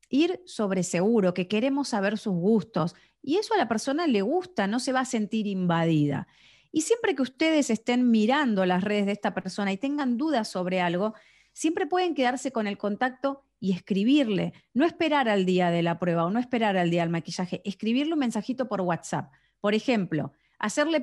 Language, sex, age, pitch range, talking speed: Spanish, female, 30-49, 190-270 Hz, 190 wpm